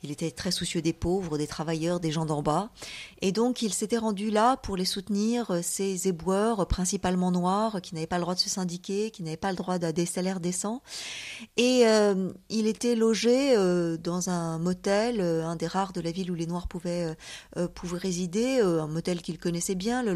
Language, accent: French, French